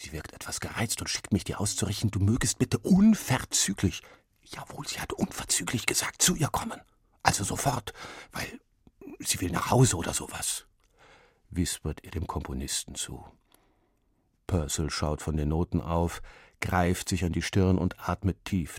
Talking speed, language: 155 wpm, German